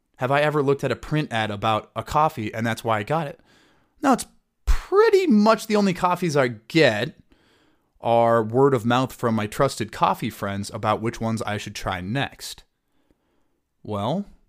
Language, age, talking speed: English, 30-49, 180 wpm